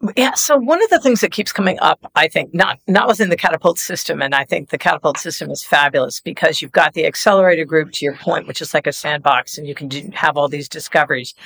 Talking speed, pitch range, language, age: 255 wpm, 140-195 Hz, English, 50-69